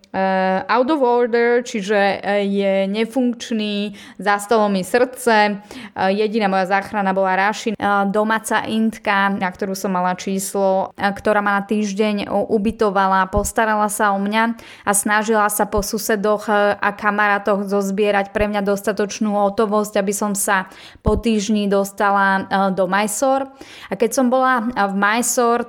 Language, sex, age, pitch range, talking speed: Slovak, female, 20-39, 195-215 Hz, 130 wpm